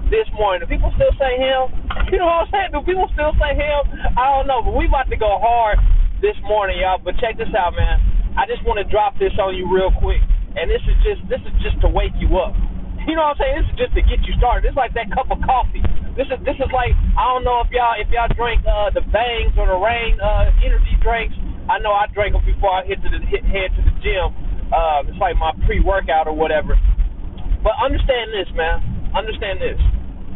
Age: 20-39